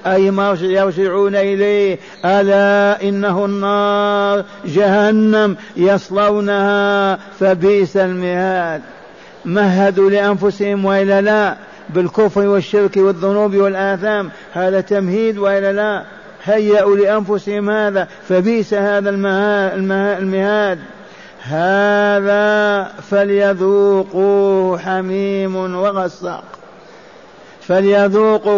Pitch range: 190-205 Hz